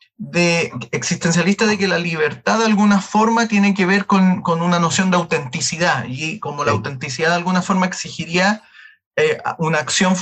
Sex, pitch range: male, 165-200 Hz